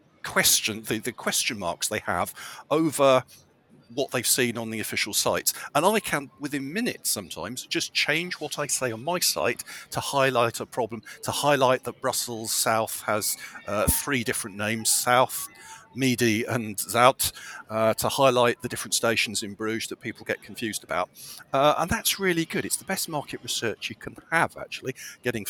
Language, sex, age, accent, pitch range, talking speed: English, male, 50-69, British, 105-140 Hz, 175 wpm